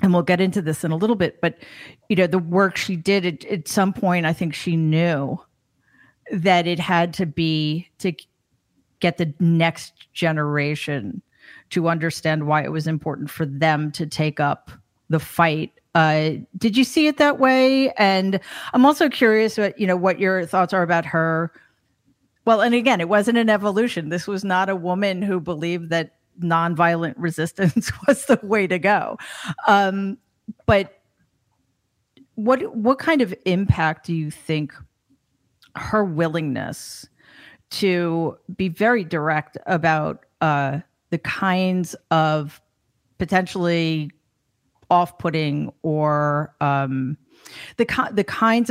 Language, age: English, 40-59